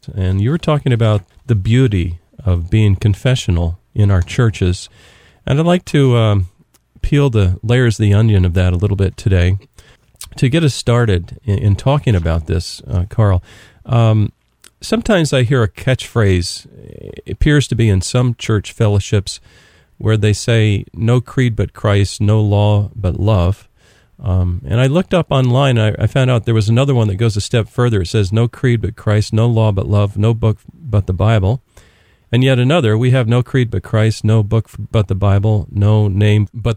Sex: male